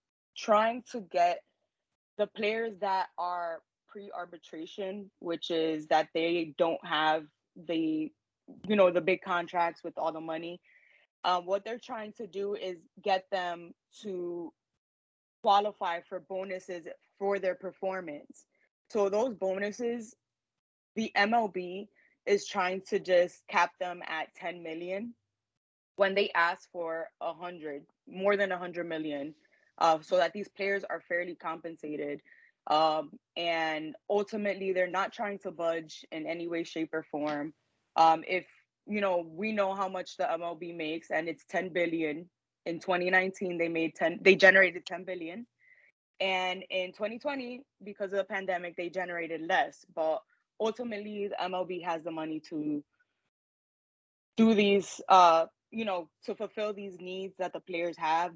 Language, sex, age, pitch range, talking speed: English, female, 20-39, 165-200 Hz, 145 wpm